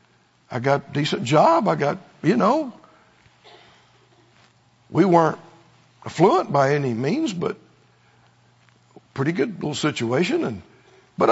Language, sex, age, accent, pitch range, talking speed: English, male, 60-79, American, 145-210 Hz, 110 wpm